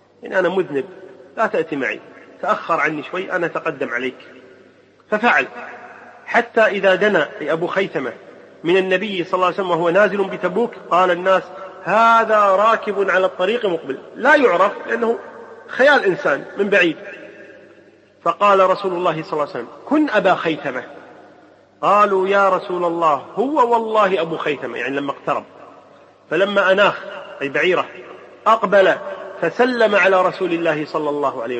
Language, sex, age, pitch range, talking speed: Arabic, male, 30-49, 155-200 Hz, 140 wpm